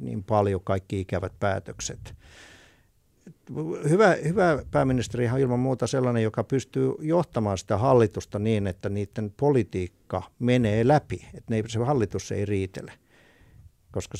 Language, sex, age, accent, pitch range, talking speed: Finnish, male, 60-79, native, 95-120 Hz, 125 wpm